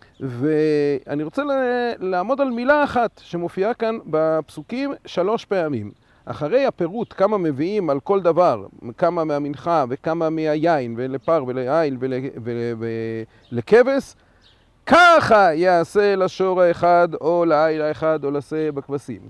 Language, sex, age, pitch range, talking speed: Hebrew, male, 40-59, 135-205 Hz, 110 wpm